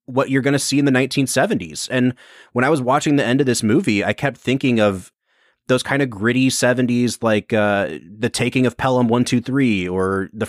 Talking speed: 205 wpm